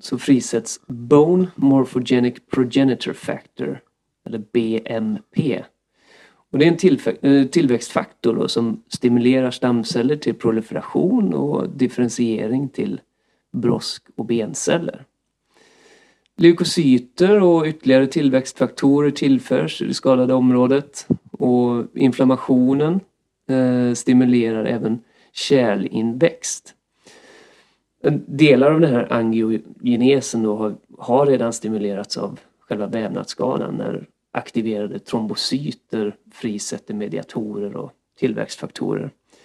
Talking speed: 90 wpm